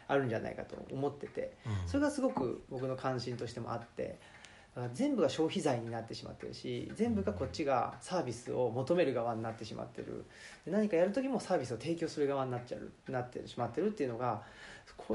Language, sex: Japanese, male